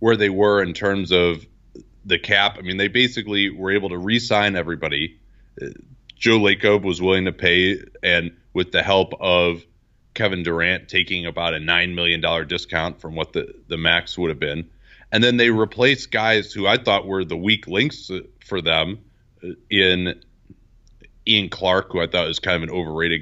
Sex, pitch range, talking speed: male, 85-100 Hz, 180 wpm